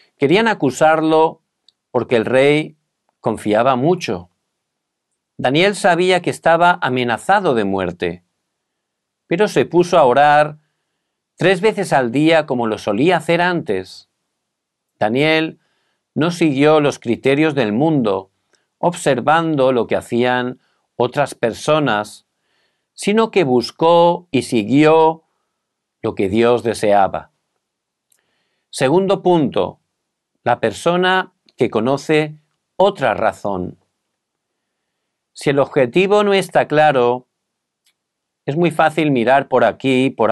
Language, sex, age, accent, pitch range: Korean, male, 50-69, Spanish, 120-170 Hz